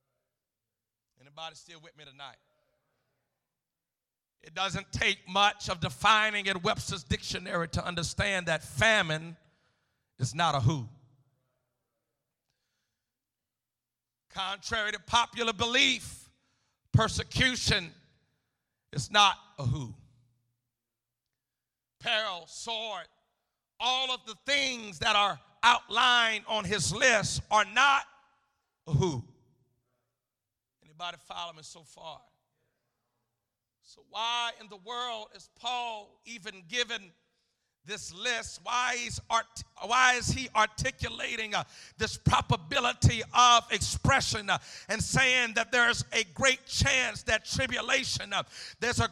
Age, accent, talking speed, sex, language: 50-69, American, 110 wpm, male, English